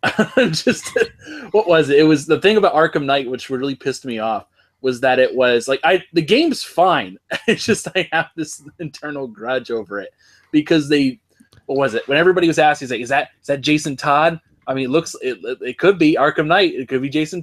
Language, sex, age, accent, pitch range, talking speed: English, male, 20-39, American, 130-160 Hz, 215 wpm